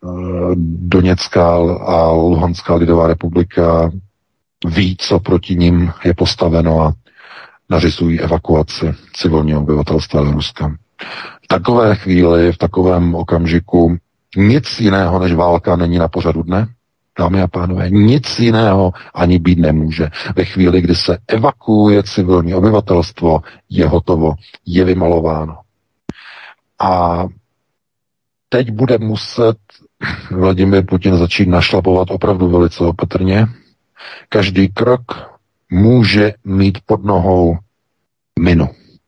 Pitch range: 85-100 Hz